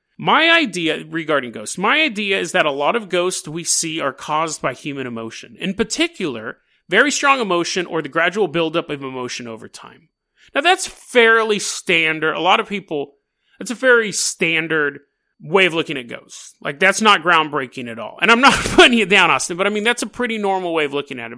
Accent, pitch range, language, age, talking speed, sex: American, 150-200 Hz, English, 30-49, 210 wpm, male